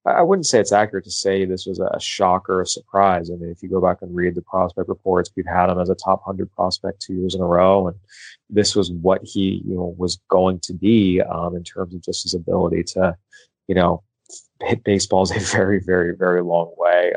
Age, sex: 20-39, male